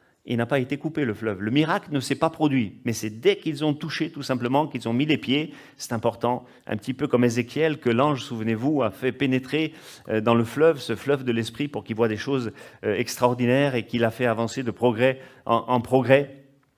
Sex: male